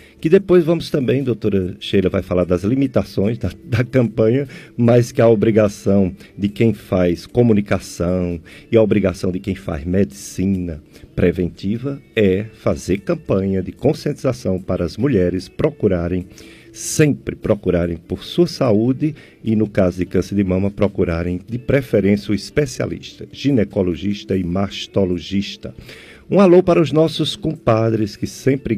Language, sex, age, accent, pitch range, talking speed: Portuguese, male, 50-69, Brazilian, 90-120 Hz, 140 wpm